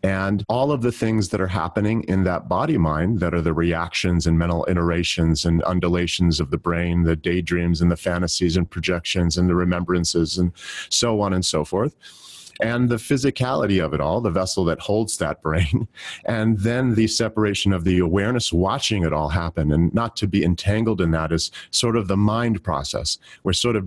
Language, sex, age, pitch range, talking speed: English, male, 40-59, 85-110 Hz, 200 wpm